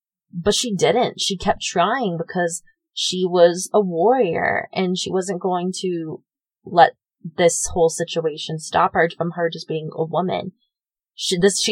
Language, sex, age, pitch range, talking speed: English, female, 20-39, 170-215 Hz, 150 wpm